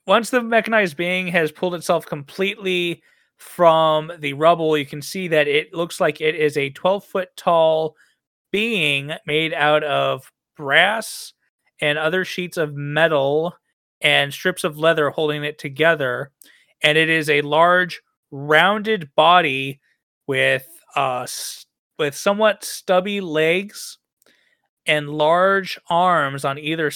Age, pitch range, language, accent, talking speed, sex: 30-49, 145-180 Hz, English, American, 130 wpm, male